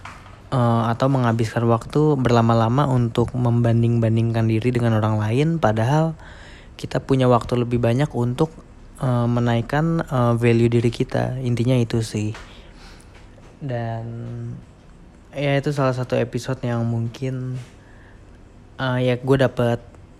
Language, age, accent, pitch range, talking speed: Indonesian, 20-39, native, 110-125 Hz, 115 wpm